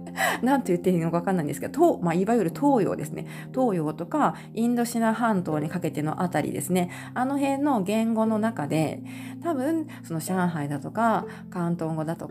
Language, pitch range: Japanese, 165-255 Hz